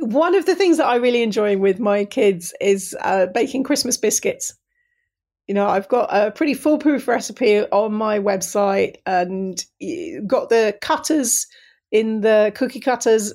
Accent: British